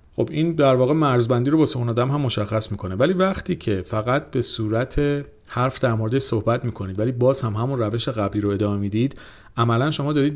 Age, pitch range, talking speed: 40-59, 105-135 Hz, 210 wpm